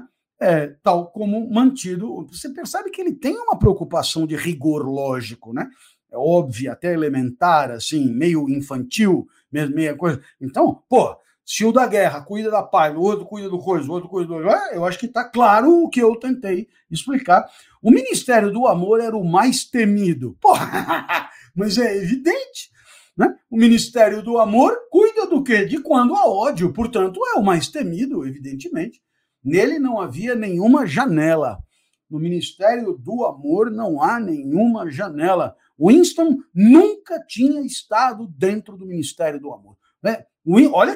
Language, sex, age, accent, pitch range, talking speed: Portuguese, male, 60-79, Brazilian, 170-280 Hz, 155 wpm